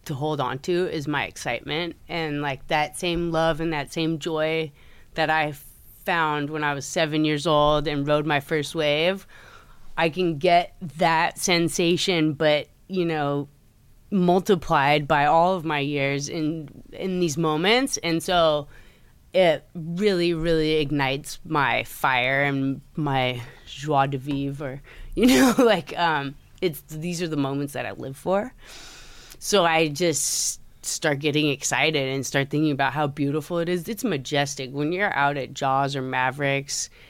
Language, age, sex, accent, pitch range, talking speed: English, 20-39, female, American, 140-165 Hz, 155 wpm